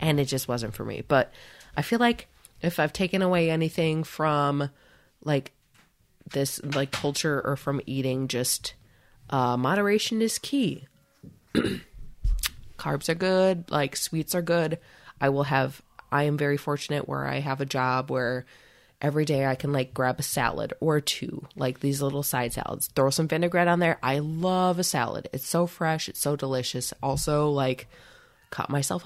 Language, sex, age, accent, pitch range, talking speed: English, female, 20-39, American, 135-170 Hz, 170 wpm